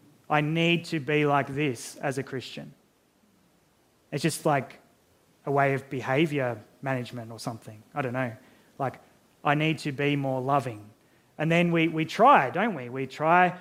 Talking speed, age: 170 wpm, 20-39